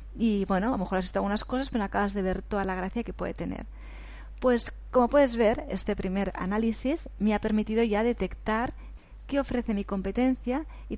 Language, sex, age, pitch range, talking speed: Spanish, female, 20-39, 190-240 Hz, 200 wpm